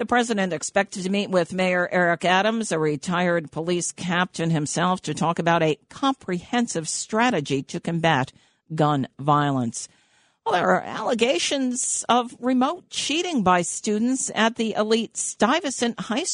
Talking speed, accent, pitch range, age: 140 wpm, American, 170-225 Hz, 50-69